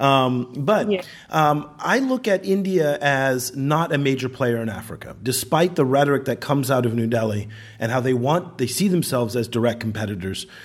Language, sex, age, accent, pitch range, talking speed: English, male, 40-59, American, 110-135 Hz, 185 wpm